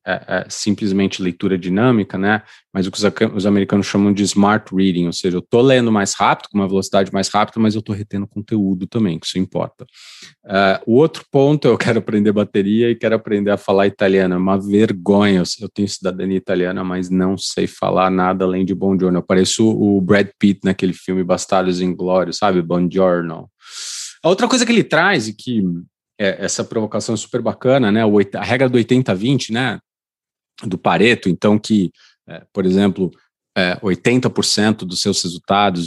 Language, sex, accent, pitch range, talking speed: Portuguese, male, Brazilian, 95-120 Hz, 190 wpm